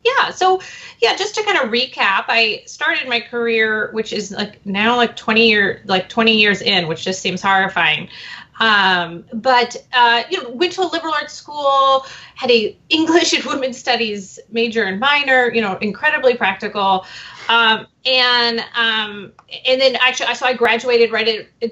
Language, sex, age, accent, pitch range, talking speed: English, female, 30-49, American, 200-250 Hz, 170 wpm